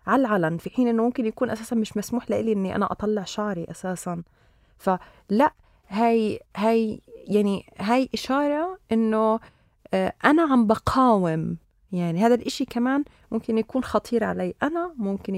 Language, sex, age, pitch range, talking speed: Arabic, female, 30-49, 190-250 Hz, 140 wpm